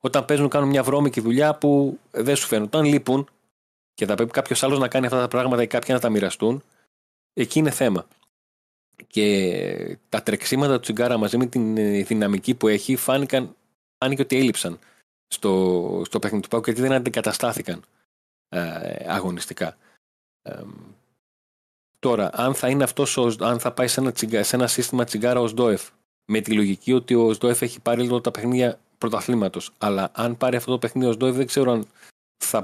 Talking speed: 175 wpm